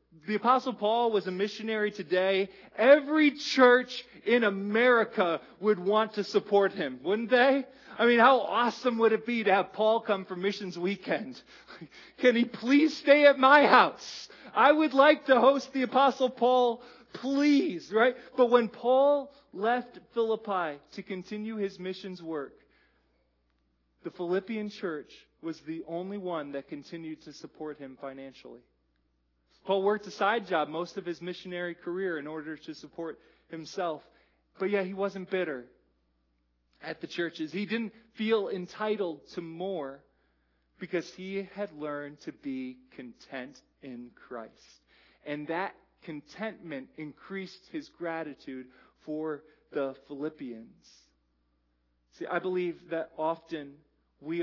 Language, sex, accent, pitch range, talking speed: English, male, American, 155-230 Hz, 140 wpm